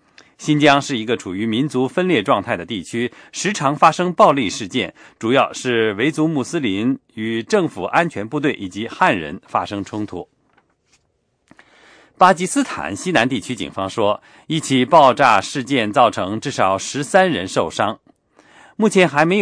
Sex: male